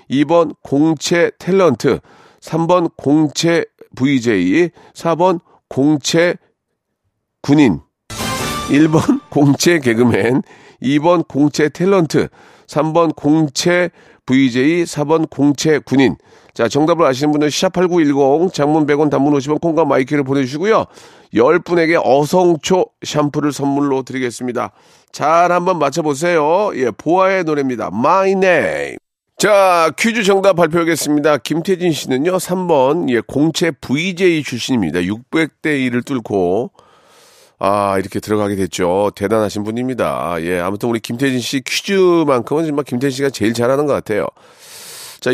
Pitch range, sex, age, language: 130-175 Hz, male, 40-59, Korean